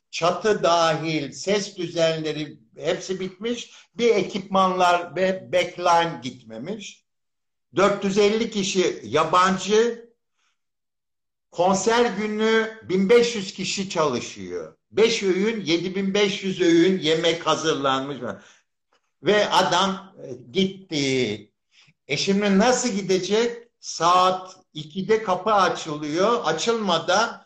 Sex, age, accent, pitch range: male, 60-79, native, 160-200 Hz